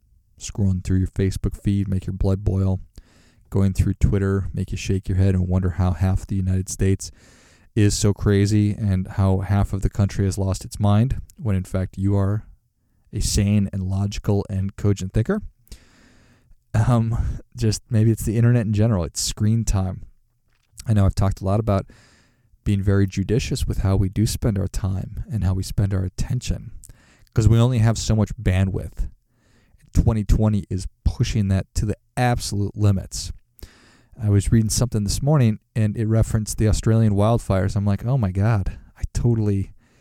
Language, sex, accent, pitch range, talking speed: English, male, American, 95-115 Hz, 175 wpm